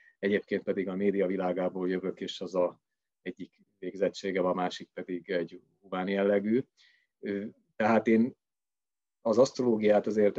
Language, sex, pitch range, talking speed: Hungarian, male, 95-110 Hz, 125 wpm